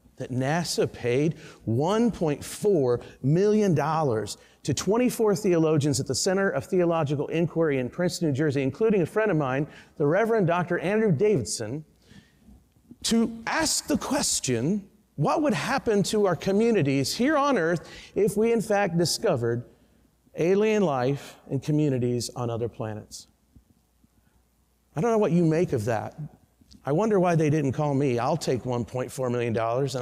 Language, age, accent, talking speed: English, 40-59, American, 145 wpm